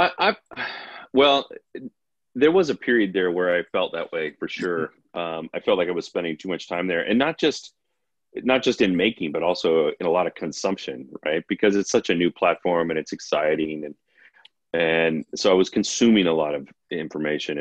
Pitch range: 80-100 Hz